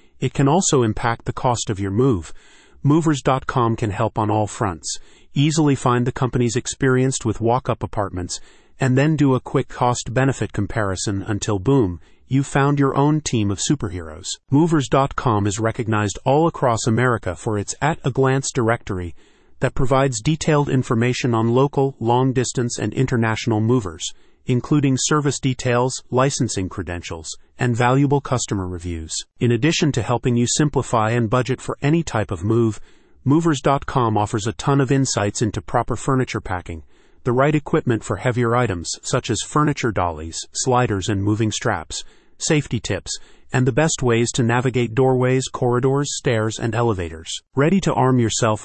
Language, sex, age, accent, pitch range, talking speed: English, male, 40-59, American, 110-135 Hz, 150 wpm